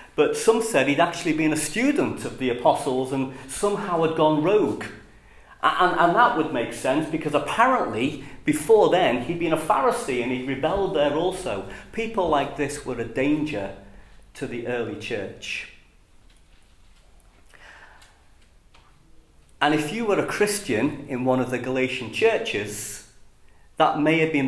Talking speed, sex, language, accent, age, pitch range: 150 wpm, male, English, British, 40-59, 100-160 Hz